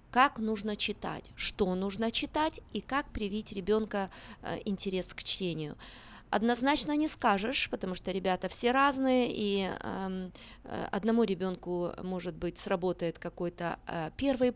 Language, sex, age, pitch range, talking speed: Russian, female, 20-39, 180-235 Hz, 125 wpm